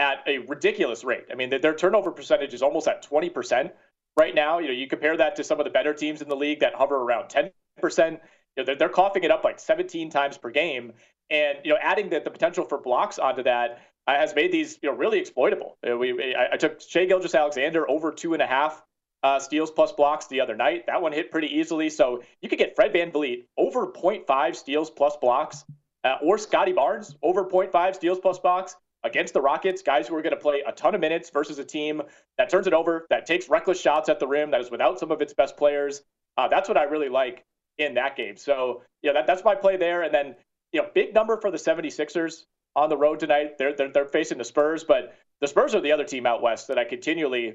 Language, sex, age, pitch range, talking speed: English, male, 30-49, 145-185 Hz, 235 wpm